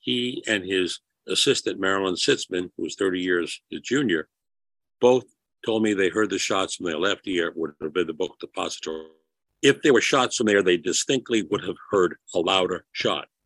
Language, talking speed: English, 190 wpm